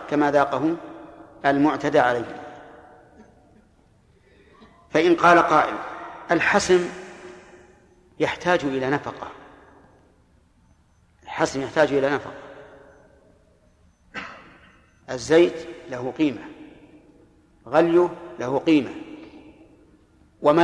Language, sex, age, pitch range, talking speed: Arabic, male, 50-69, 135-165 Hz, 65 wpm